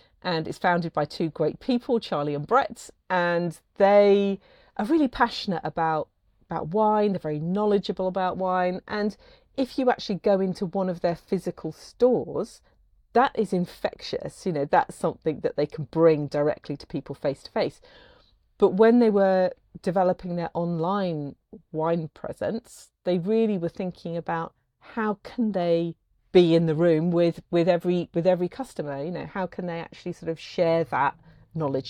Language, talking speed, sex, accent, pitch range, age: English, 165 wpm, female, British, 165-200 Hz, 40-59